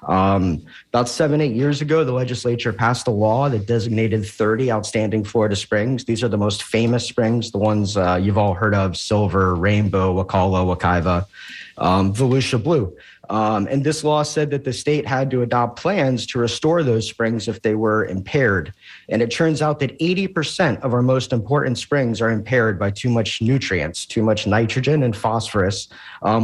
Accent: American